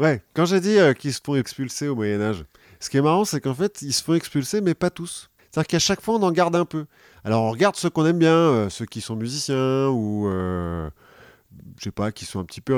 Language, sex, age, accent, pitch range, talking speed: French, male, 30-49, French, 105-155 Hz, 265 wpm